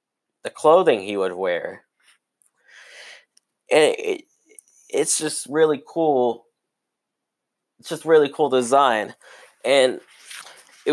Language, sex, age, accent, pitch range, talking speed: English, male, 20-39, American, 125-160 Hz, 105 wpm